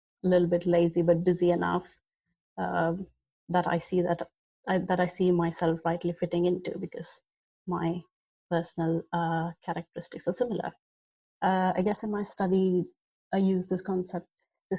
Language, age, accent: Turkish, 30-49, Indian